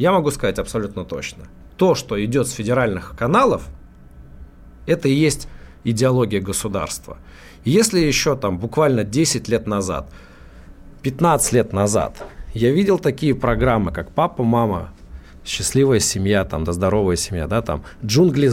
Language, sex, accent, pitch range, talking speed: Russian, male, native, 95-135 Hz, 120 wpm